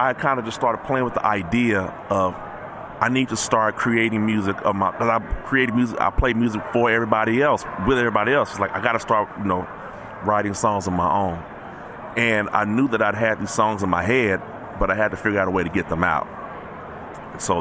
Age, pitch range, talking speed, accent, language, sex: 30-49, 95-115 Hz, 230 wpm, American, English, male